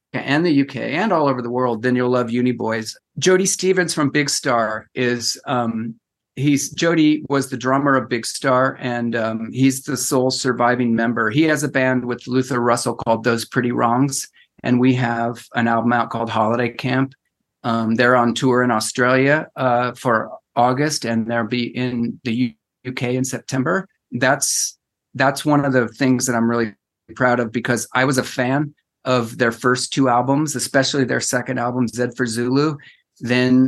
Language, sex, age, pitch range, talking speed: English, male, 40-59, 120-135 Hz, 180 wpm